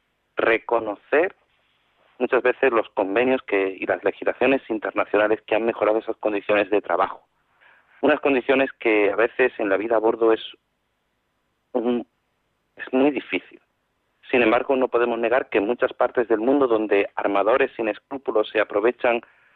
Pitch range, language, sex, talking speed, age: 105-130 Hz, Spanish, male, 150 wpm, 40-59